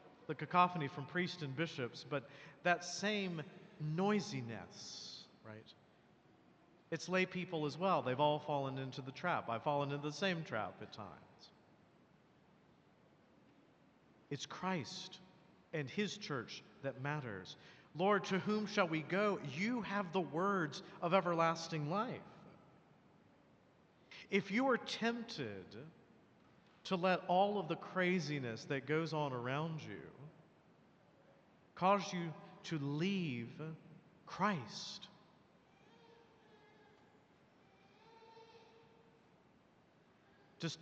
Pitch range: 145-185 Hz